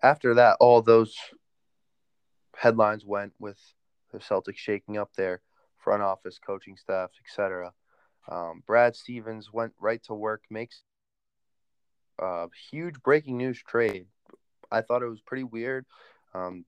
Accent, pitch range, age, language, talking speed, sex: American, 105-120 Hz, 20-39, English, 135 wpm, male